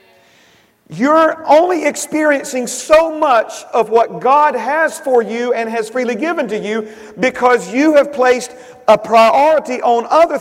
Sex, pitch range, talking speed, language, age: male, 235-285 Hz, 145 wpm, English, 40-59